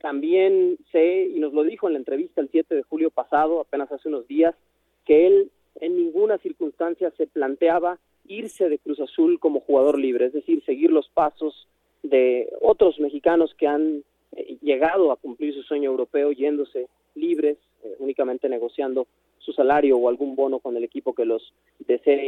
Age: 30-49